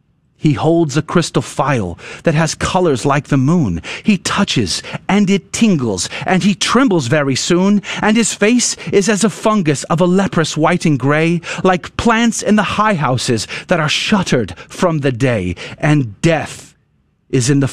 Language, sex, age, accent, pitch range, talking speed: English, male, 40-59, American, 140-210 Hz, 175 wpm